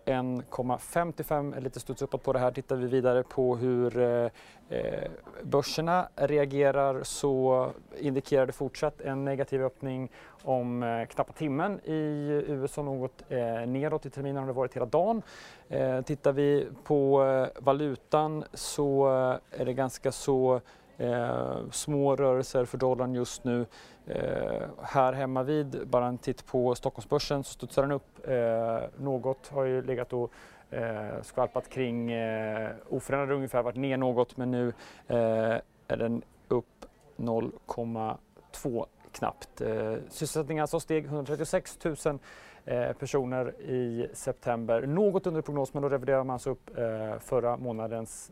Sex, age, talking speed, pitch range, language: male, 30-49, 135 wpm, 120-140 Hz, English